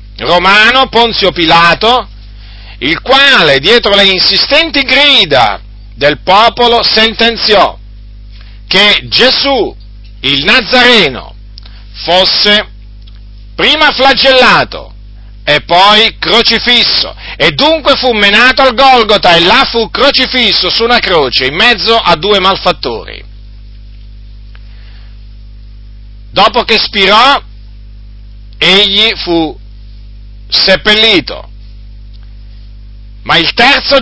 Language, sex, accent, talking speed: Italian, male, native, 85 wpm